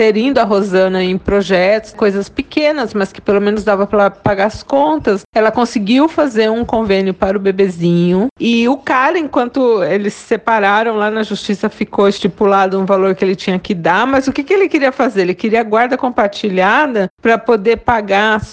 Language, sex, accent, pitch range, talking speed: Portuguese, female, Brazilian, 190-245 Hz, 190 wpm